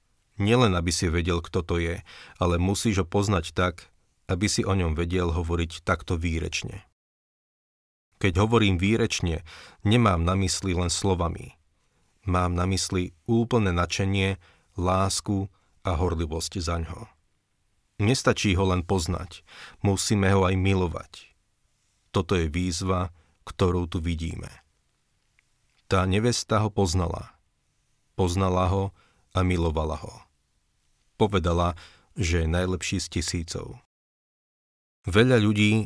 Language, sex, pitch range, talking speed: Slovak, male, 85-100 Hz, 115 wpm